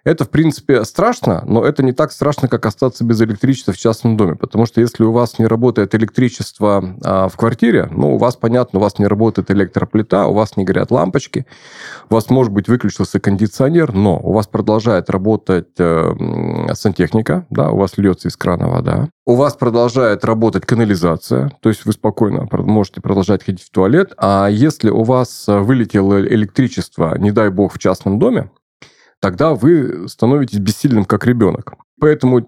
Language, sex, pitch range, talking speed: Russian, male, 100-125 Hz, 170 wpm